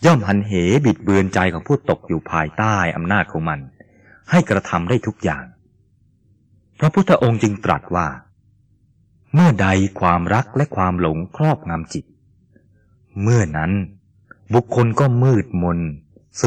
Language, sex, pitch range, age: Thai, male, 95-120 Hz, 30-49